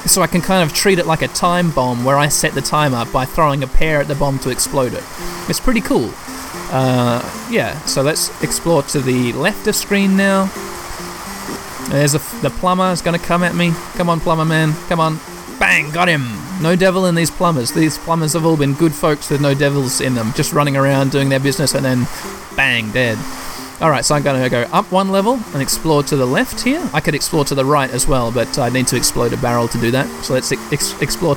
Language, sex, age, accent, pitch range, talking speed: English, male, 20-39, Australian, 130-175 Hz, 240 wpm